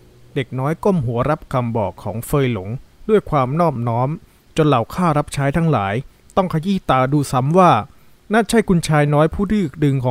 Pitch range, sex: 120-170 Hz, male